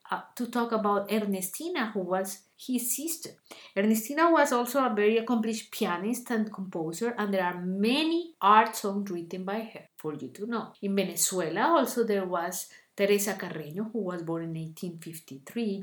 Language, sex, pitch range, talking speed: English, female, 185-230 Hz, 165 wpm